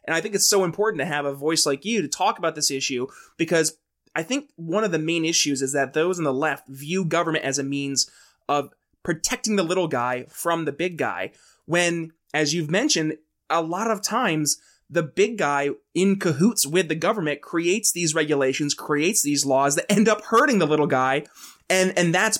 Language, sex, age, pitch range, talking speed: English, male, 20-39, 150-180 Hz, 205 wpm